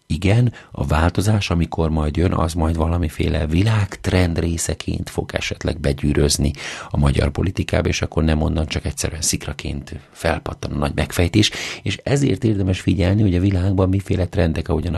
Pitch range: 80-95 Hz